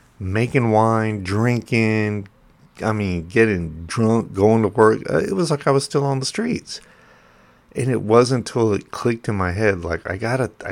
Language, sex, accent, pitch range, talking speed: English, male, American, 90-115 Hz, 185 wpm